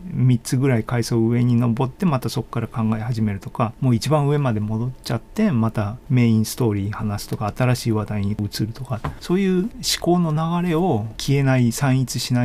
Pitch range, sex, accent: 110-140 Hz, male, native